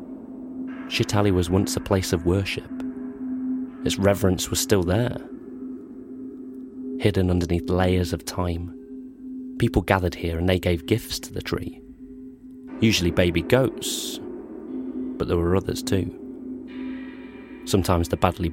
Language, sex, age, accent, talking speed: English, male, 30-49, British, 125 wpm